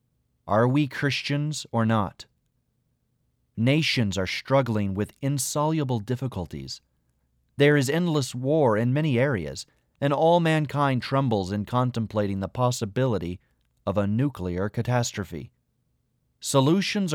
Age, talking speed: 30-49, 110 wpm